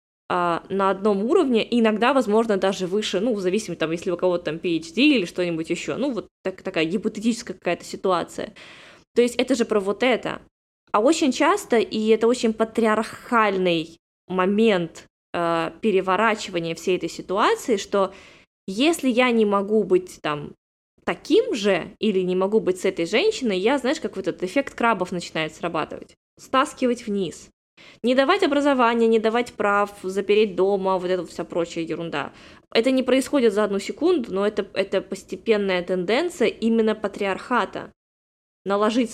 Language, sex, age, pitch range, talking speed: Russian, female, 20-39, 185-230 Hz, 150 wpm